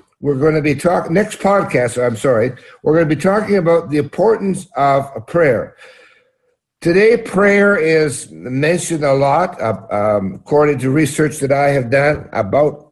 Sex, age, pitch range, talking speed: male, 60-79, 130-180 Hz, 160 wpm